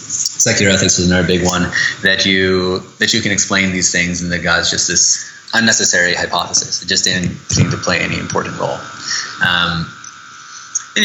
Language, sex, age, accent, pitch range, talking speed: English, male, 20-39, American, 90-105 Hz, 175 wpm